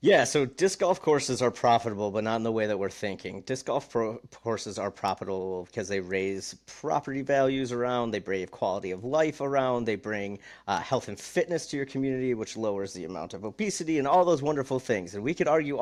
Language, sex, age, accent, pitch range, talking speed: English, male, 40-59, American, 105-130 Hz, 210 wpm